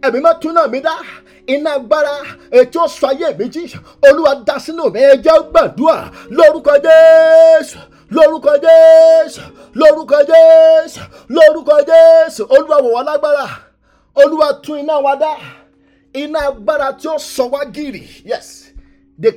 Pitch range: 270-320 Hz